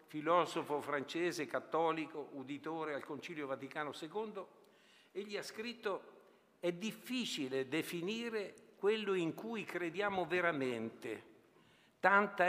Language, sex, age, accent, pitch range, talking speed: Italian, male, 60-79, native, 155-215 Hz, 95 wpm